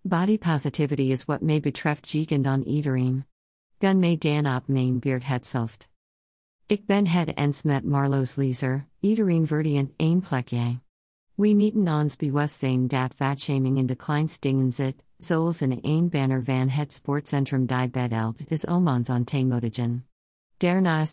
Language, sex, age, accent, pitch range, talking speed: English, female, 50-69, American, 130-155 Hz, 155 wpm